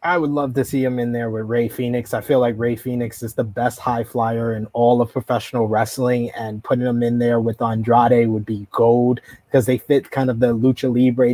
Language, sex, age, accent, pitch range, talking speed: English, male, 20-39, American, 120-135 Hz, 235 wpm